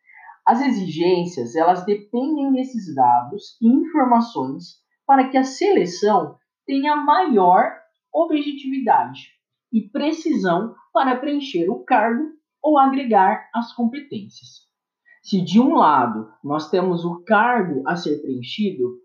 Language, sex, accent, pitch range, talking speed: Portuguese, male, Brazilian, 175-265 Hz, 115 wpm